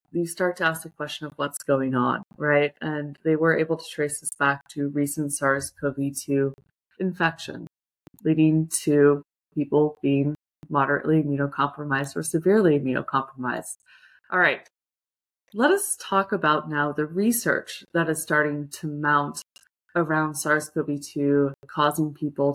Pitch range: 145-165 Hz